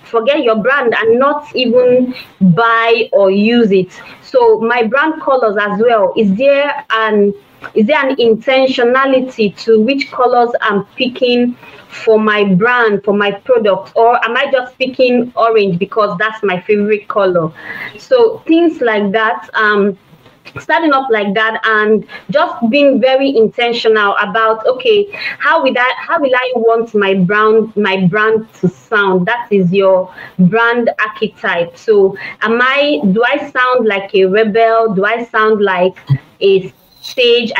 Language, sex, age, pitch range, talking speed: English, female, 20-39, 210-260 Hz, 150 wpm